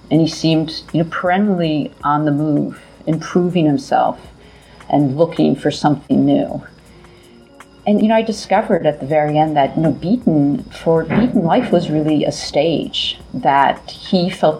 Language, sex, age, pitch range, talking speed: English, female, 40-59, 145-180 Hz, 160 wpm